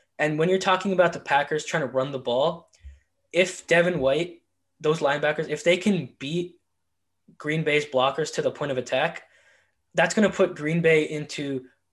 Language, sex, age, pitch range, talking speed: English, male, 10-29, 135-170 Hz, 180 wpm